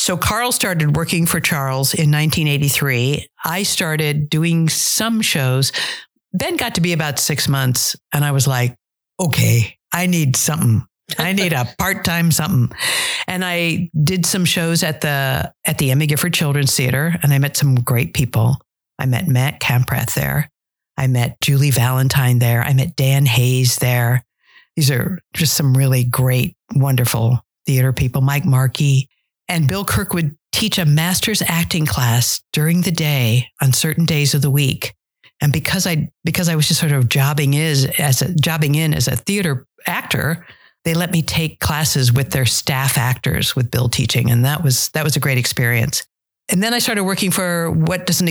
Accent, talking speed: American, 180 wpm